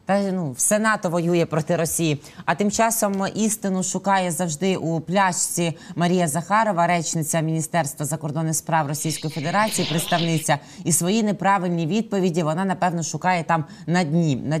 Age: 20-39